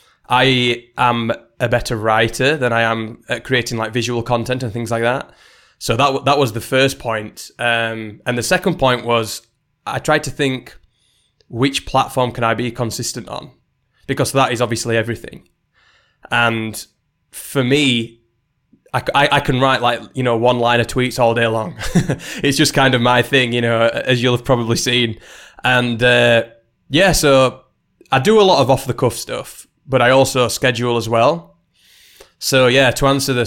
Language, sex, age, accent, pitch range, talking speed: English, male, 20-39, British, 115-130 Hz, 185 wpm